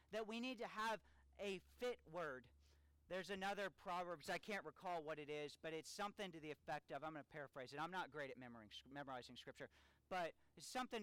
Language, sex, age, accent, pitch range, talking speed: English, male, 40-59, American, 120-195 Hz, 205 wpm